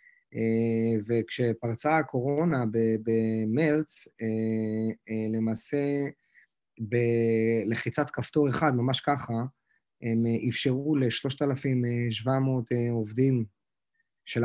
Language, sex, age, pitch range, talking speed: Hebrew, male, 30-49, 115-140 Hz, 60 wpm